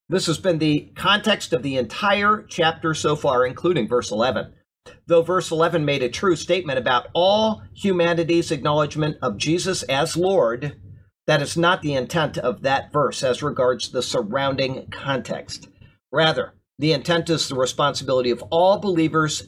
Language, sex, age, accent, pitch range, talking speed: English, male, 50-69, American, 125-170 Hz, 155 wpm